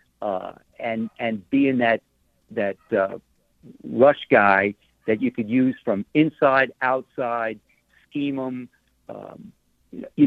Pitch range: 115-140 Hz